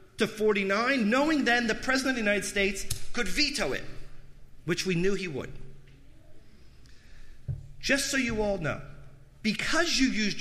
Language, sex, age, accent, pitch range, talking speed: English, male, 40-59, American, 135-215 Hz, 150 wpm